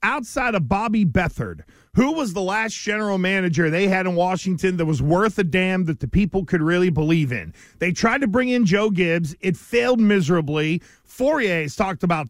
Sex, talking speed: male, 195 wpm